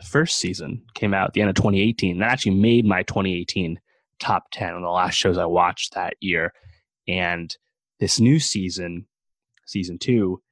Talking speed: 185 wpm